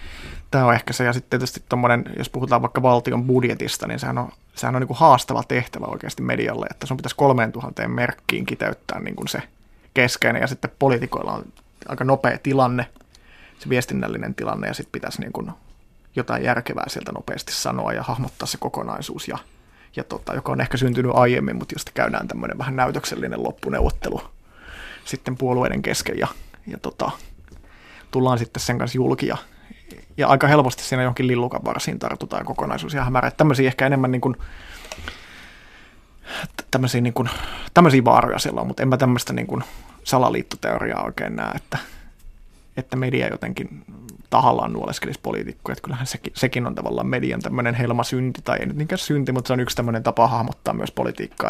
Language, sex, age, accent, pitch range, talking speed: Finnish, male, 30-49, native, 120-130 Hz, 170 wpm